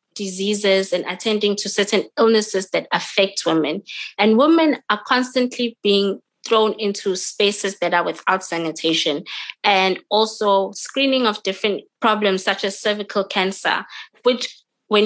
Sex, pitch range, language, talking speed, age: female, 190-225 Hz, English, 130 wpm, 20-39